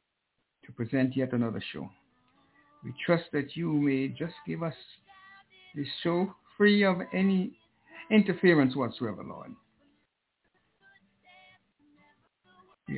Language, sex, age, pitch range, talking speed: English, male, 60-79, 140-215 Hz, 95 wpm